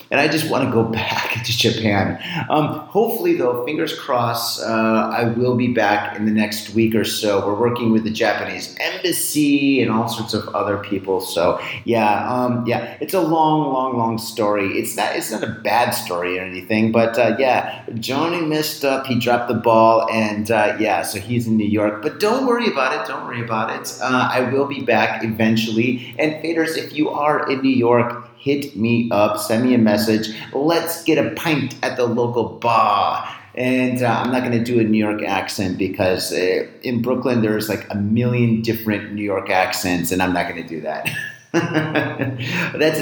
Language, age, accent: English, 30-49, American